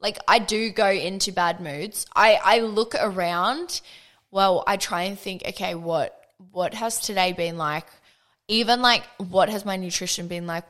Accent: Australian